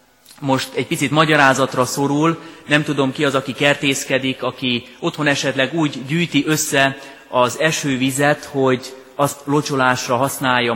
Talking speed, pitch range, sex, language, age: 130 wpm, 125-145 Hz, male, Hungarian, 30-49